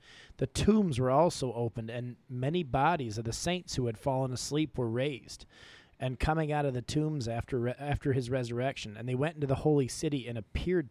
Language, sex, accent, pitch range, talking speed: English, male, American, 120-150 Hz, 205 wpm